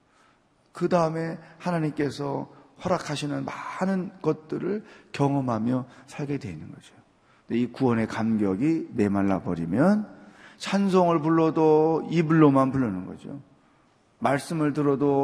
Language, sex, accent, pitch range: Korean, male, native, 120-180 Hz